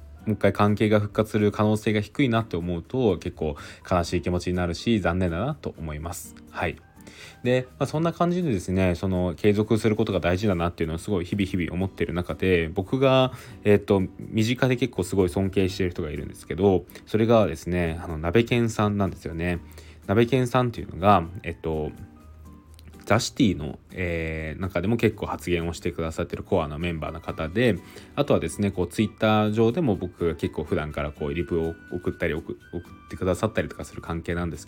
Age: 20-39